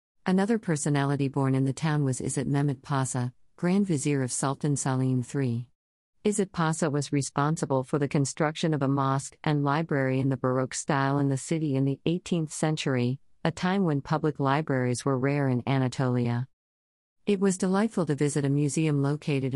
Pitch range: 130-155 Hz